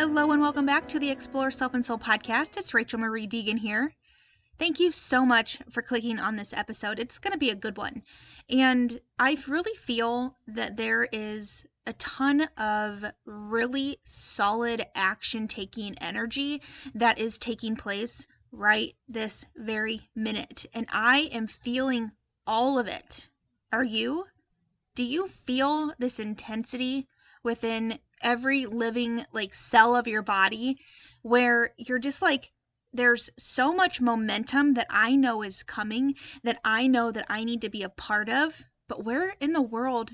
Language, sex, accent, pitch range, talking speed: English, female, American, 225-265 Hz, 155 wpm